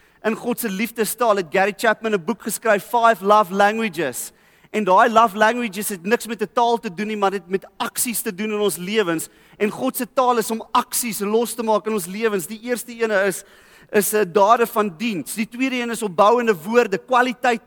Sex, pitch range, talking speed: male, 205-245 Hz, 205 wpm